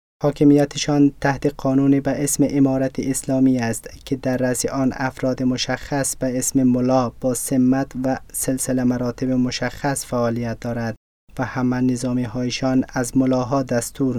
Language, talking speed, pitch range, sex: Persian, 135 wpm, 125-135 Hz, male